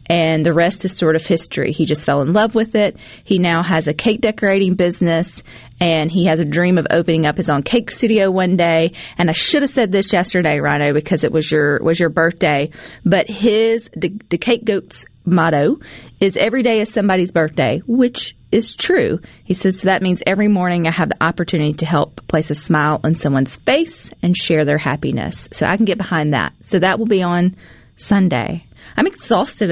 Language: English